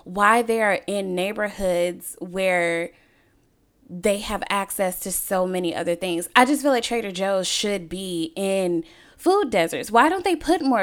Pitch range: 170-230 Hz